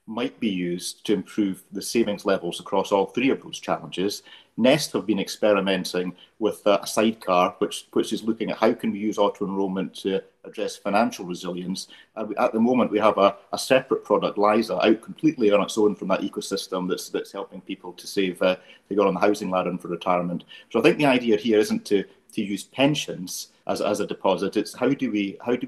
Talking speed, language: 215 wpm, English